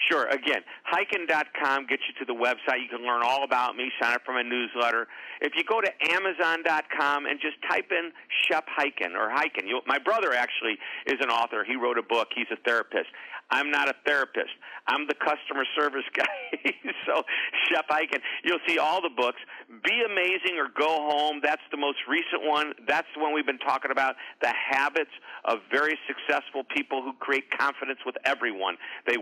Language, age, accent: English, 50-69, American